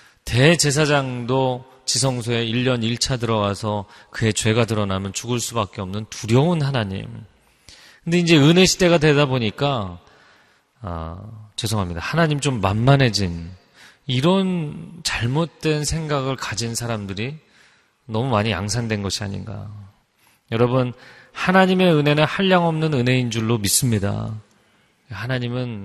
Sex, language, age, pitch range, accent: male, Korean, 30-49, 110-155 Hz, native